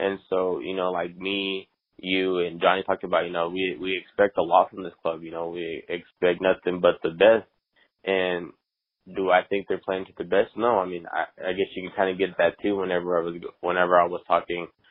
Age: 20-39